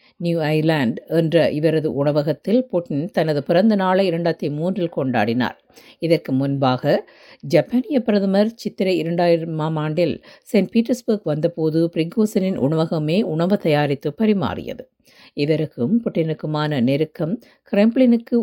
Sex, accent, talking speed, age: female, native, 95 wpm, 50-69